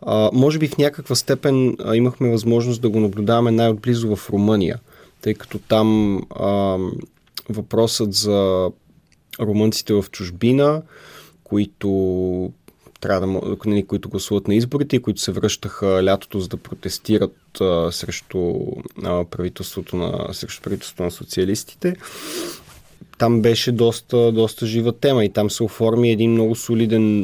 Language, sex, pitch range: Bulgarian, male, 95-115 Hz